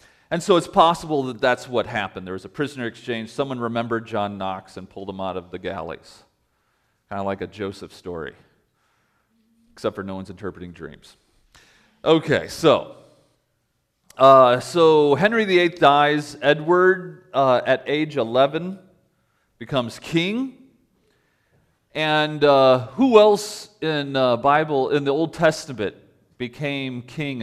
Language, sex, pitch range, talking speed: English, male, 120-170 Hz, 140 wpm